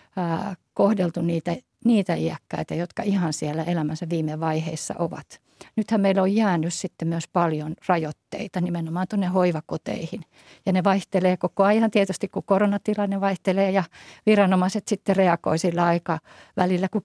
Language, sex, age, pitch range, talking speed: Finnish, female, 50-69, 175-200 Hz, 135 wpm